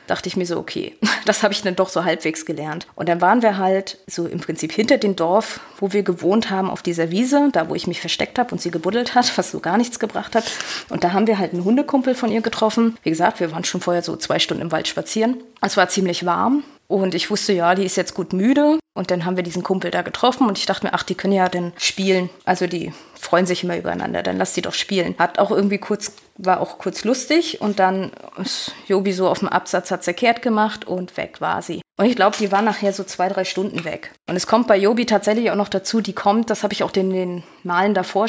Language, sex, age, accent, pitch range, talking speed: German, female, 20-39, German, 180-215 Hz, 255 wpm